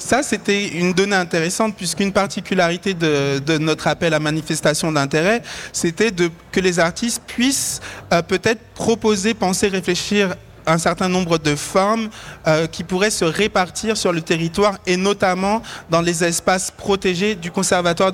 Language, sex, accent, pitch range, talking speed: French, male, French, 160-190 Hz, 150 wpm